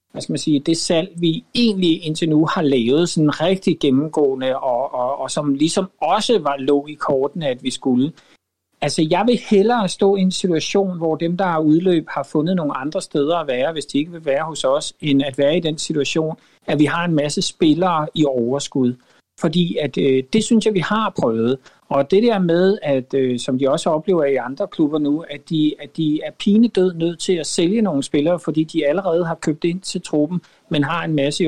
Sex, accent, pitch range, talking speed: male, native, 140-185 Hz, 225 wpm